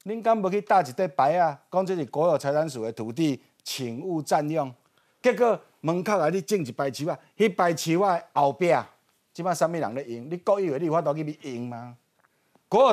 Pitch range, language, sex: 145-220 Hz, Chinese, male